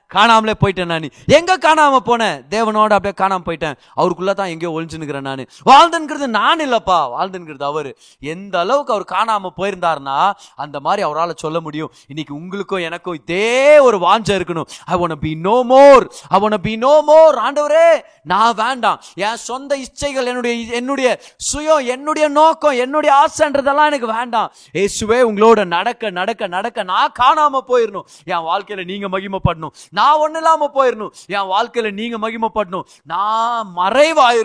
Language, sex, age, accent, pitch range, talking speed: Tamil, male, 30-49, native, 160-240 Hz, 70 wpm